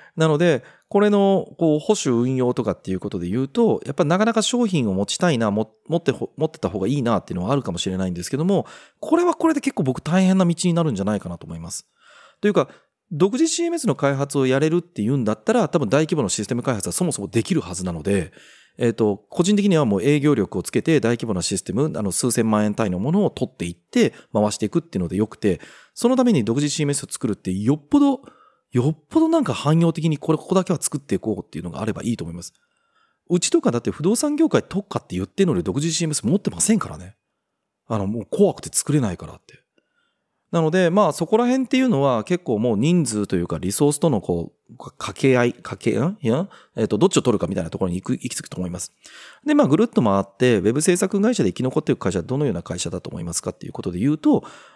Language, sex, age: Japanese, male, 30-49